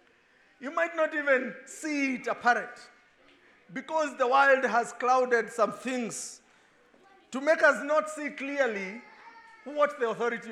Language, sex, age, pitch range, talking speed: English, male, 50-69, 230-320 Hz, 130 wpm